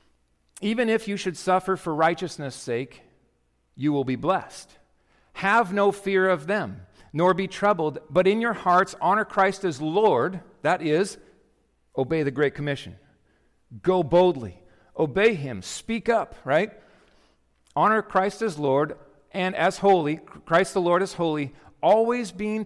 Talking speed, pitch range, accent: 145 wpm, 160-215 Hz, American